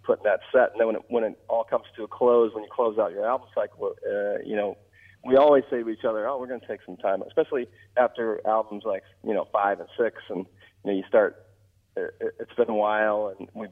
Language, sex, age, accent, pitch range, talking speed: English, male, 40-59, American, 100-125 Hz, 240 wpm